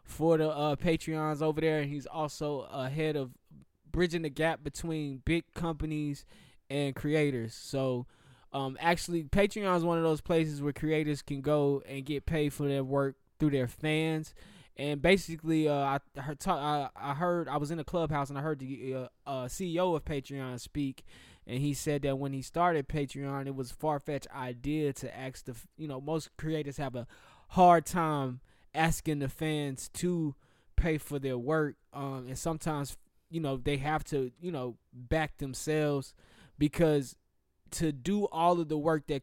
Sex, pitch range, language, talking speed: male, 135-155 Hz, English, 180 wpm